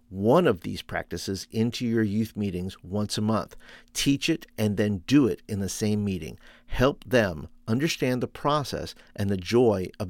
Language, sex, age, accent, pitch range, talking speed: English, male, 50-69, American, 100-125 Hz, 180 wpm